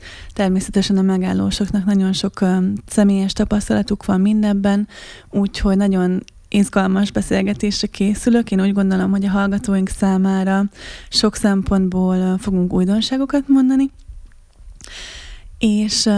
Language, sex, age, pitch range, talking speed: Hungarian, female, 20-39, 190-210 Hz, 110 wpm